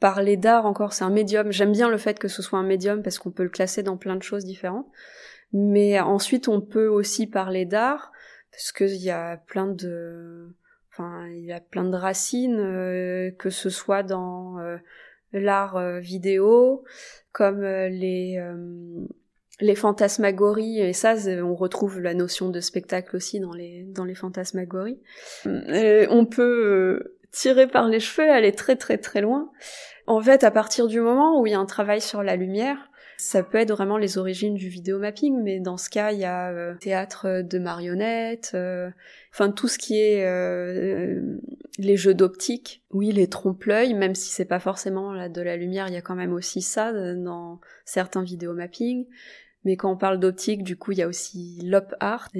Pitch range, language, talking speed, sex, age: 185-215 Hz, French, 190 wpm, female, 20-39